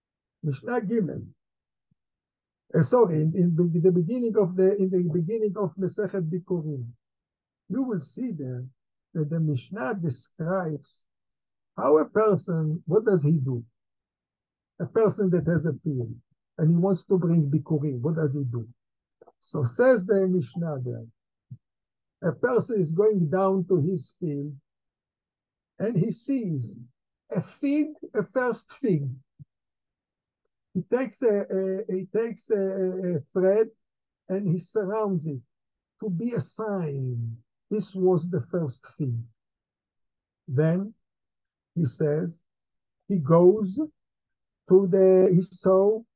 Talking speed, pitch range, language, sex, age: 130 wpm, 145-190 Hz, English, male, 60-79